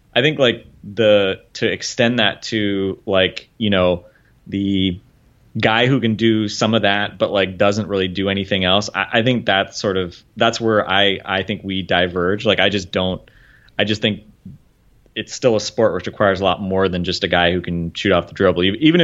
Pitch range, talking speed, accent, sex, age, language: 90-110 Hz, 210 wpm, American, male, 20-39, English